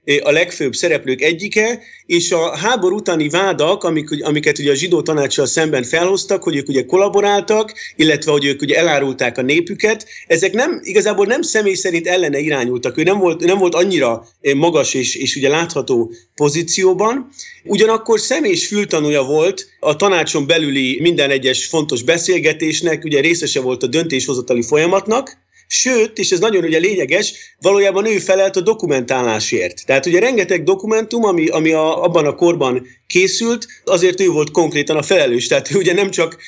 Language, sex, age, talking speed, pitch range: Hungarian, male, 30-49, 160 wpm, 140-195 Hz